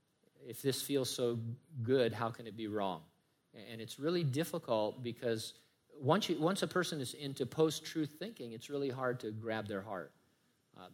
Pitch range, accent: 115-155 Hz, American